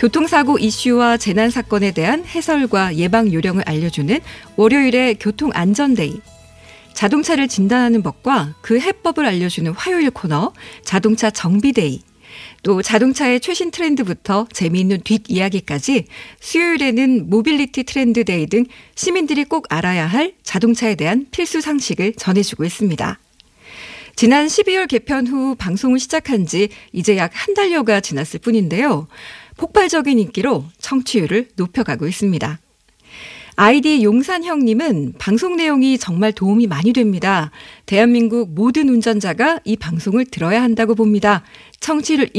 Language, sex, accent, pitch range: Korean, female, native, 195-285 Hz